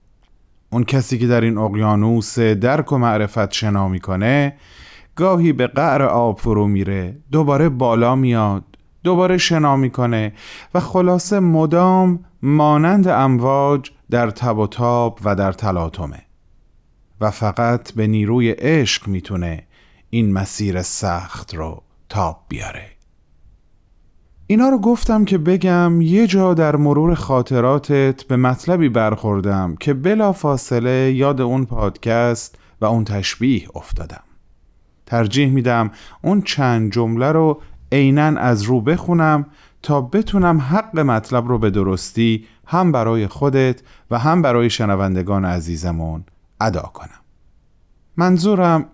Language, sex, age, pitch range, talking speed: Persian, male, 30-49, 100-145 Hz, 120 wpm